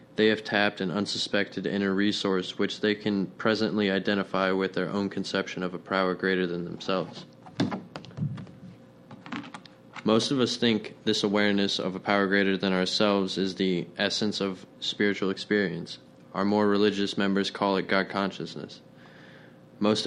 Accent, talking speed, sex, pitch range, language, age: American, 145 wpm, male, 95-105 Hz, English, 20-39